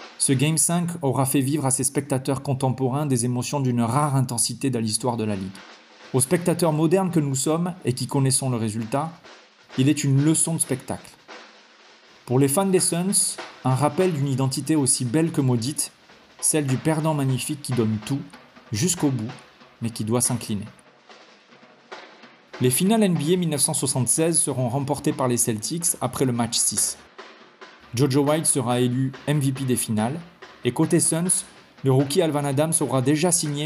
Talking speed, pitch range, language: 165 wpm, 125-160 Hz, French